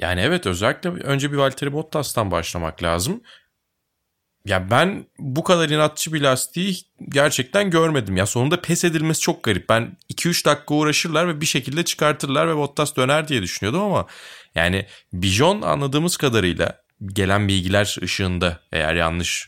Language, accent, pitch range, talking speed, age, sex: Turkish, native, 95-140 Hz, 145 wpm, 30-49, male